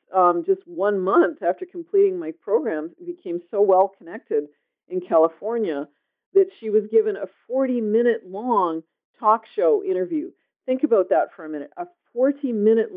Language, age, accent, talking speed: English, 50-69, American, 155 wpm